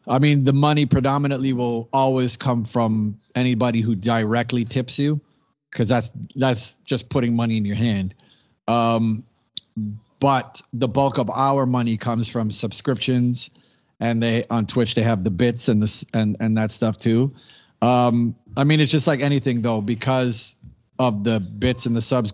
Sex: male